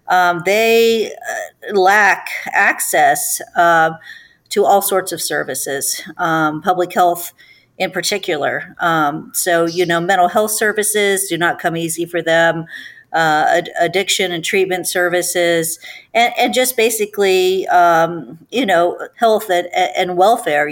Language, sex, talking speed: English, female, 135 wpm